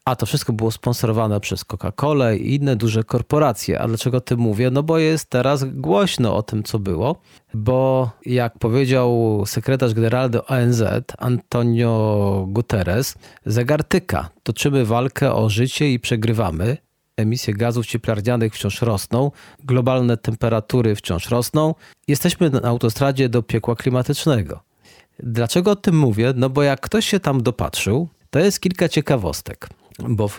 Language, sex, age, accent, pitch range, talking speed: Polish, male, 40-59, native, 115-140 Hz, 140 wpm